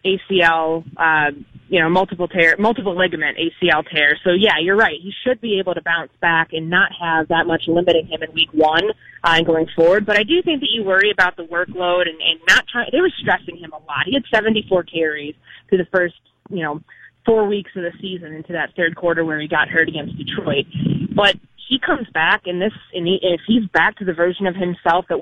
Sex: female